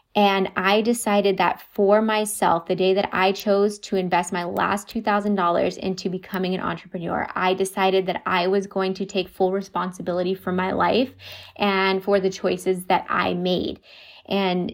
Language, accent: English, American